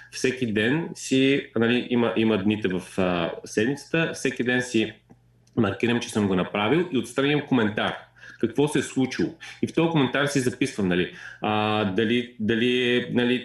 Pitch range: 105-135 Hz